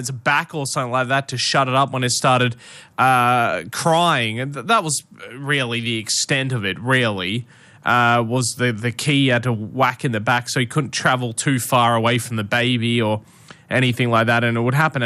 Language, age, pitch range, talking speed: English, 20-39, 120-145 Hz, 215 wpm